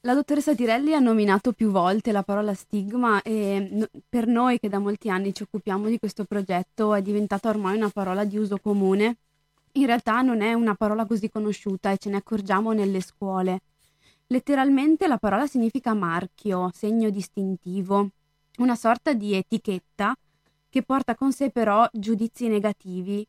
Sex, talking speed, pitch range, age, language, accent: female, 160 wpm, 190-230 Hz, 20-39, Italian, native